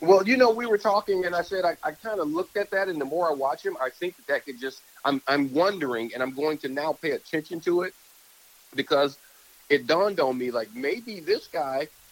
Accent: American